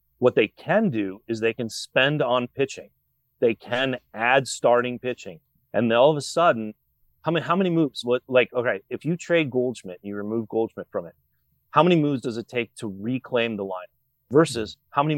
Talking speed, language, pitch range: 205 wpm, English, 105-130 Hz